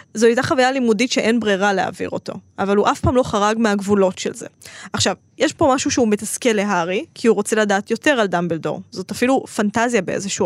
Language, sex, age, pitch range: Hebrew, female, 20-39, 195-240 Hz